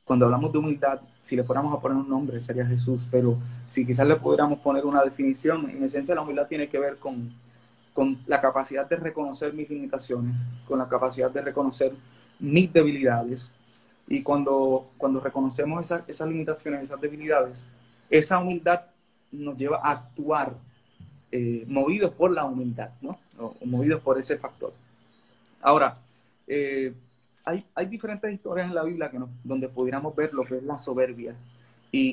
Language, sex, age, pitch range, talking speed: Spanish, male, 20-39, 125-150 Hz, 170 wpm